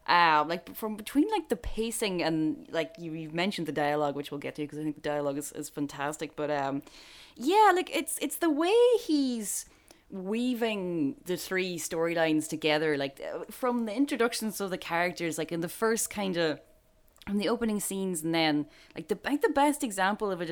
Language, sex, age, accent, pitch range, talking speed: English, female, 10-29, Irish, 160-245 Hz, 200 wpm